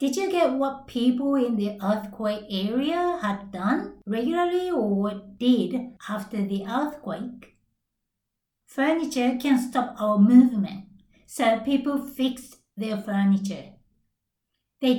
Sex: female